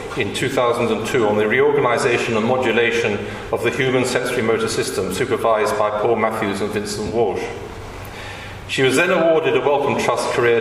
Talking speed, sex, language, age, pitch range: 160 wpm, male, English, 40-59, 110-170 Hz